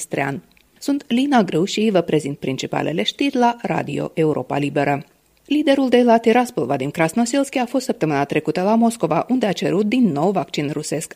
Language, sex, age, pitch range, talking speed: Romanian, female, 30-49, 155-230 Hz, 165 wpm